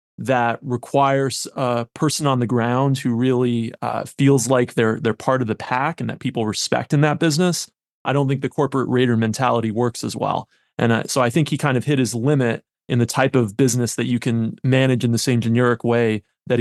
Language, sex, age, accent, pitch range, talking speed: English, male, 30-49, American, 120-145 Hz, 220 wpm